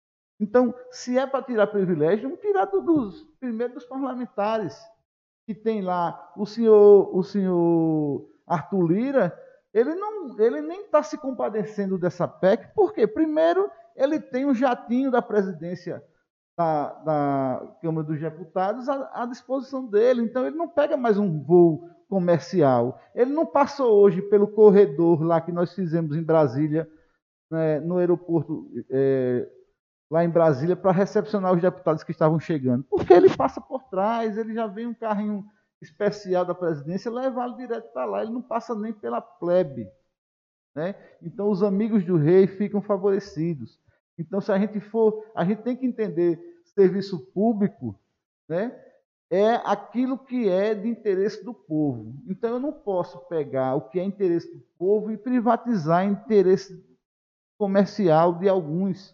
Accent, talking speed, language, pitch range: Brazilian, 155 wpm, Portuguese, 170-240 Hz